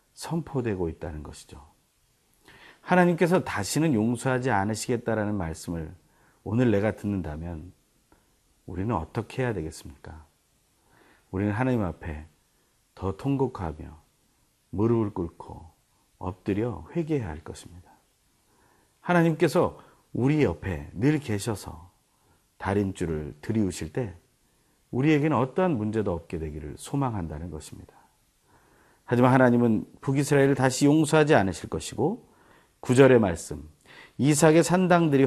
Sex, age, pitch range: male, 40-59, 85-130 Hz